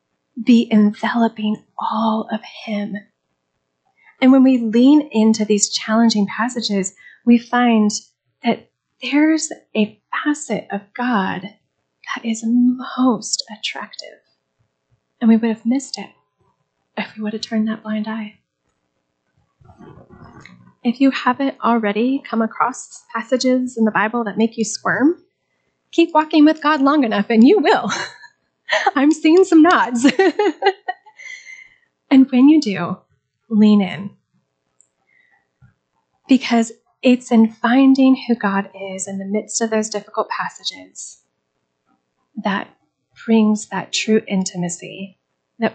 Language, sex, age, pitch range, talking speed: English, female, 30-49, 195-255 Hz, 120 wpm